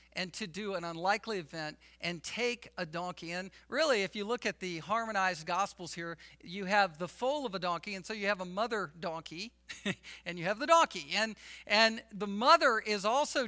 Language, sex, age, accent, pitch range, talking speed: English, male, 50-69, American, 170-220 Hz, 200 wpm